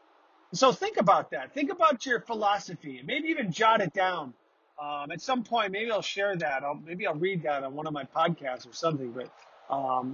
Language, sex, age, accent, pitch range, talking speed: English, male, 30-49, American, 160-245 Hz, 215 wpm